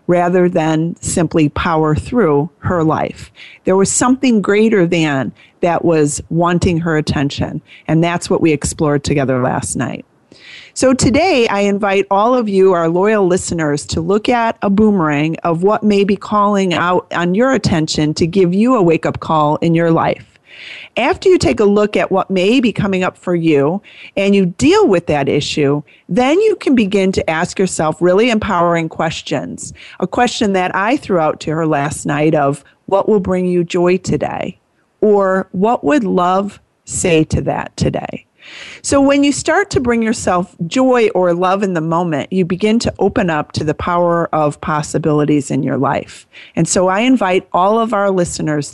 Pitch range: 160-210 Hz